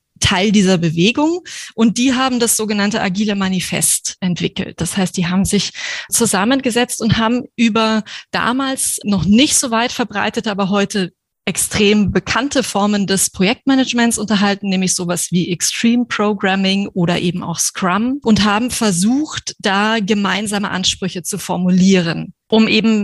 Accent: German